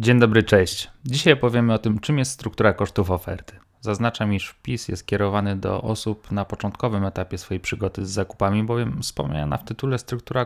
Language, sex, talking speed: Polish, male, 180 wpm